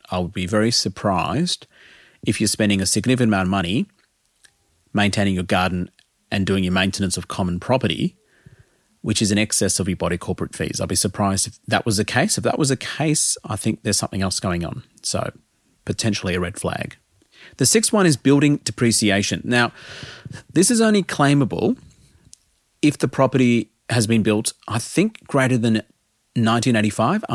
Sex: male